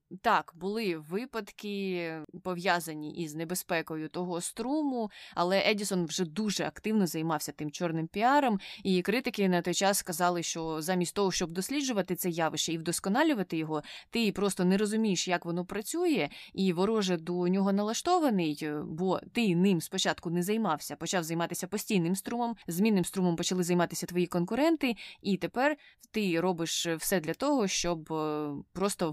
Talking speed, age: 145 wpm, 20-39